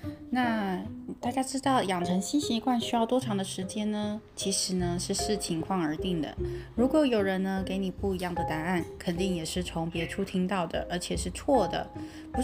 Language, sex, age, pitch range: Chinese, female, 20-39, 165-215 Hz